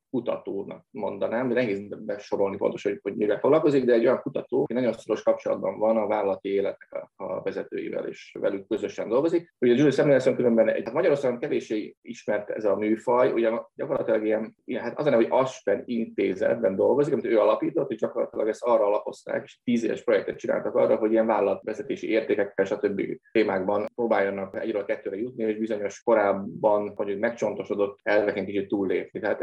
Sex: male